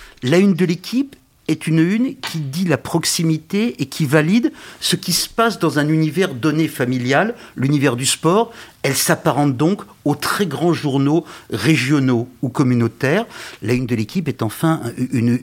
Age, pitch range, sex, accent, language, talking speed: 50-69, 125-170 Hz, male, French, French, 165 wpm